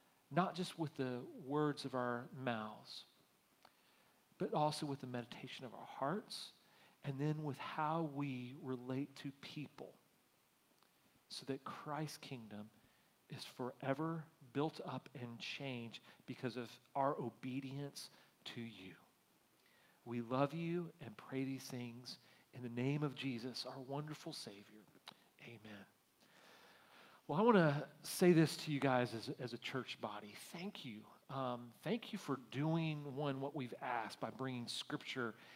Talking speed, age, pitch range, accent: 140 wpm, 40-59, 125-155 Hz, American